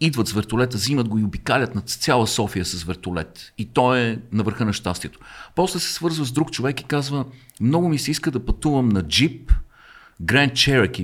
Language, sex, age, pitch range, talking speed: Bulgarian, male, 50-69, 100-130 Hz, 200 wpm